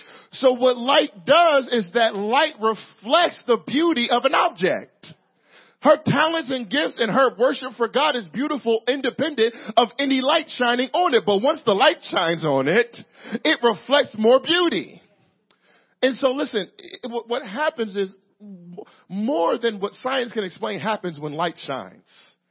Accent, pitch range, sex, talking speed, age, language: American, 185-250 Hz, male, 155 wpm, 40-59, English